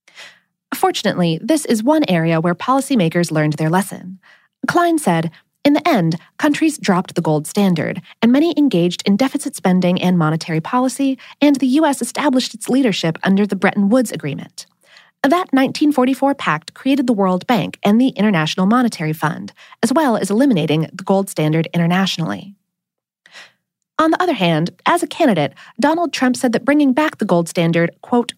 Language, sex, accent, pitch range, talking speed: English, female, American, 175-265 Hz, 165 wpm